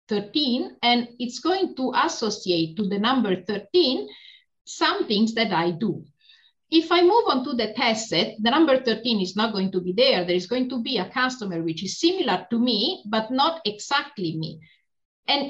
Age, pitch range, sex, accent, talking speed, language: 50-69, 190-260 Hz, female, Italian, 190 wpm, English